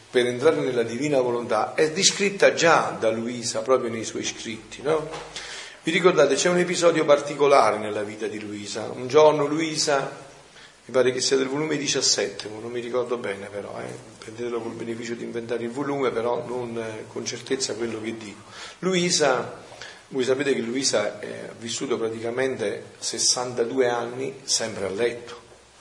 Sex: male